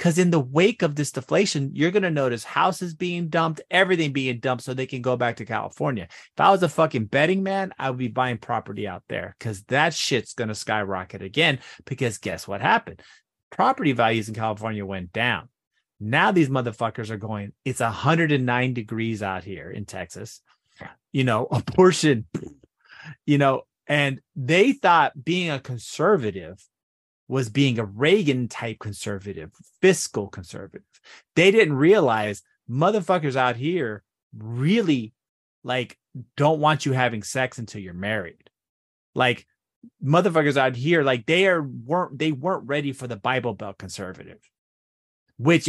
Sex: male